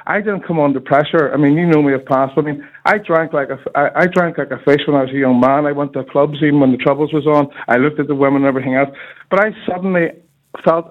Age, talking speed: 50-69, 265 wpm